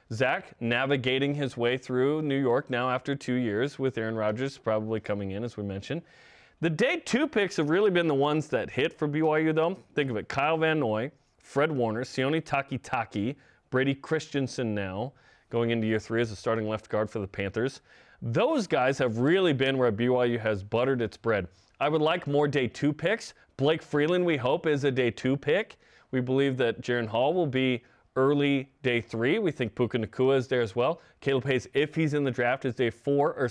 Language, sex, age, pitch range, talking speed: English, male, 30-49, 115-150 Hz, 205 wpm